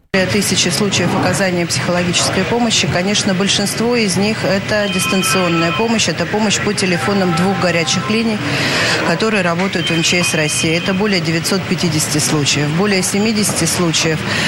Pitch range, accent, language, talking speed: 170-195 Hz, native, Russian, 135 wpm